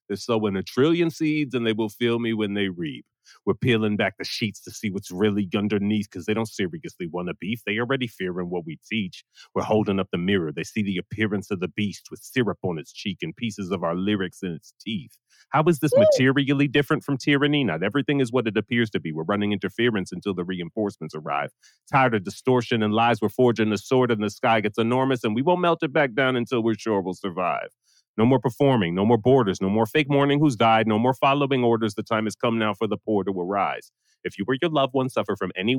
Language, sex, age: English, male, 30-49